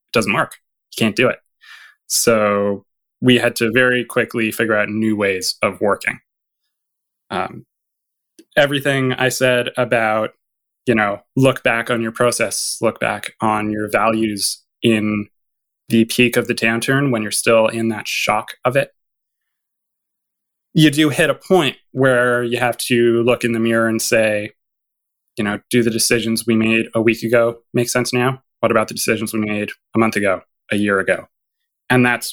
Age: 20-39